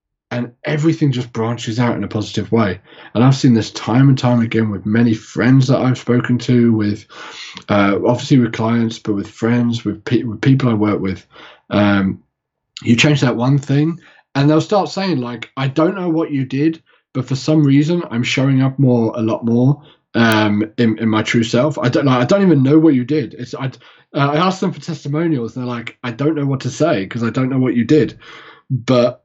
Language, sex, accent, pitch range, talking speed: English, male, British, 110-140 Hz, 220 wpm